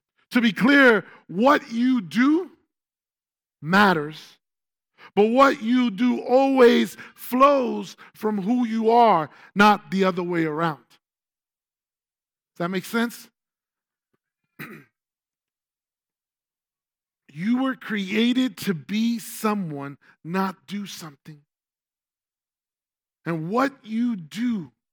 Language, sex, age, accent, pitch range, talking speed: English, male, 40-59, American, 175-230 Hz, 95 wpm